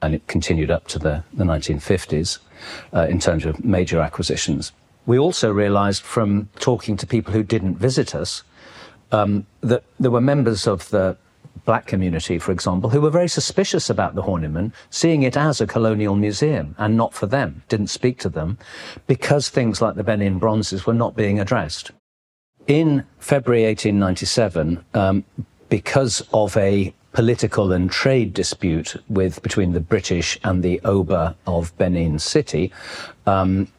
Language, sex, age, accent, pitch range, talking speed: English, male, 50-69, British, 90-115 Hz, 160 wpm